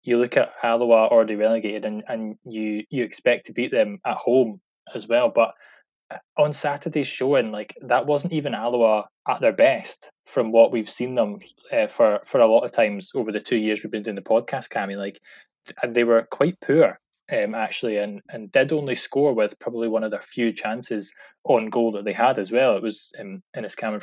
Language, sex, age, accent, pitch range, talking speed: English, male, 10-29, British, 110-145 Hz, 205 wpm